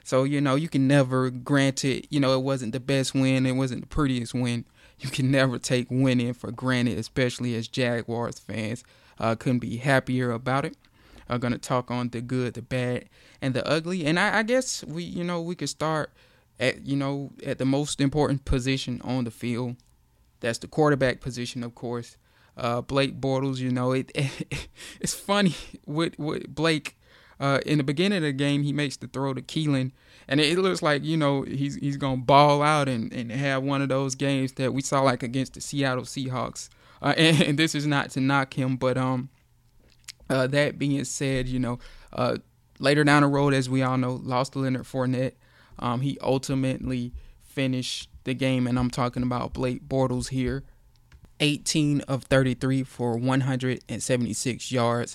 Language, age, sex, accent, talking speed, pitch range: English, 20-39, male, American, 185 wpm, 125-140 Hz